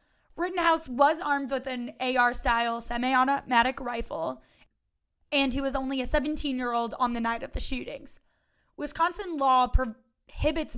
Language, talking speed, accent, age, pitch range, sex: English, 130 wpm, American, 10-29, 240-275 Hz, female